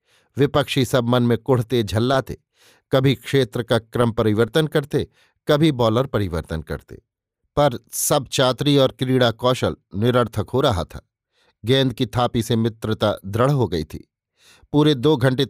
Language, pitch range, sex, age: Hindi, 115-135 Hz, male, 50-69